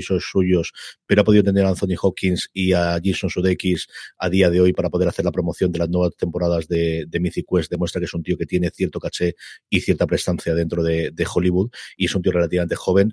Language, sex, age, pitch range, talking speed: Spanish, male, 30-49, 85-100 Hz, 235 wpm